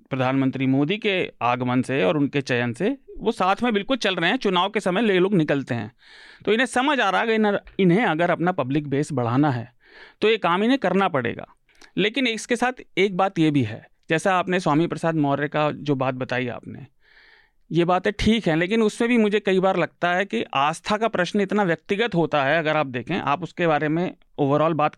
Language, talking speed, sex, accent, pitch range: Hindi, 220 wpm, male, native, 150-205 Hz